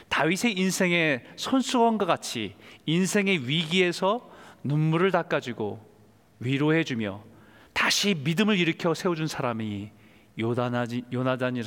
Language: Korean